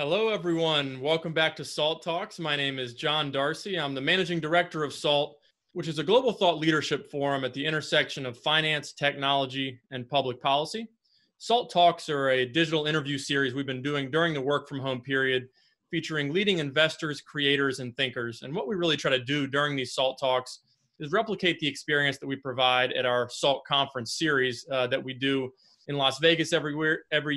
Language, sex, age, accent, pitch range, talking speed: English, male, 30-49, American, 135-160 Hz, 190 wpm